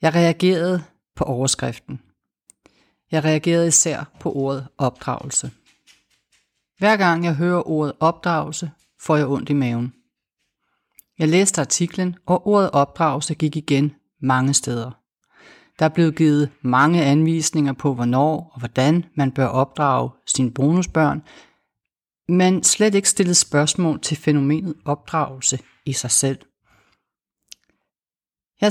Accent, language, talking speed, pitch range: native, Danish, 120 wpm, 140-175 Hz